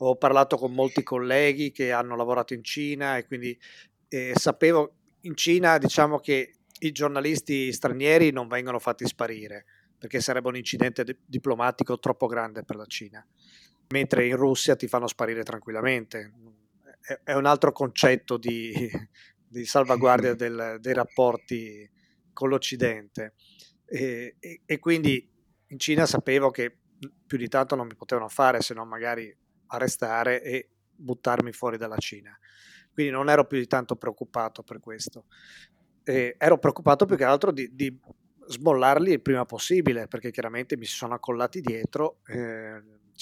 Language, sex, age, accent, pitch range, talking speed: Italian, male, 30-49, native, 120-140 Hz, 150 wpm